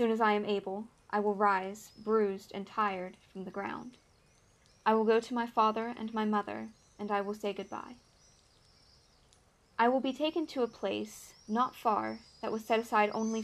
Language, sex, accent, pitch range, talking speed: English, female, American, 195-230 Hz, 190 wpm